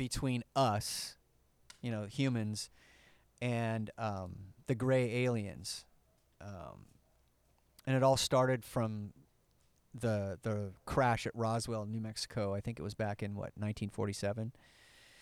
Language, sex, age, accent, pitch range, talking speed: English, male, 40-59, American, 105-135 Hz, 120 wpm